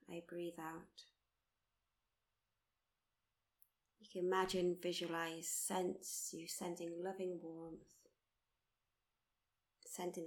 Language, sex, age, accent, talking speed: English, female, 30-49, British, 75 wpm